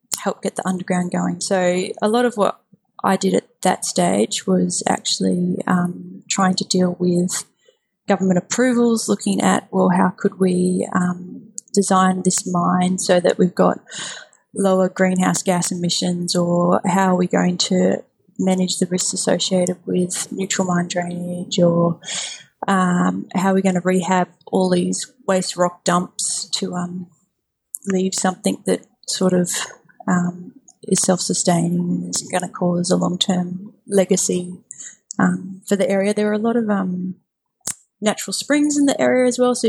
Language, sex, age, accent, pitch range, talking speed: English, female, 20-39, Australian, 180-200 Hz, 160 wpm